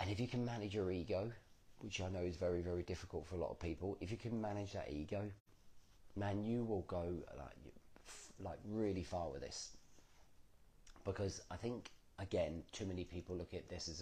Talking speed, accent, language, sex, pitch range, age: 195 wpm, British, English, male, 85-100 Hz, 40-59